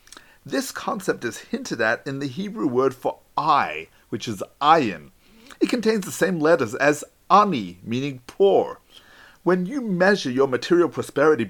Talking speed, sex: 150 wpm, male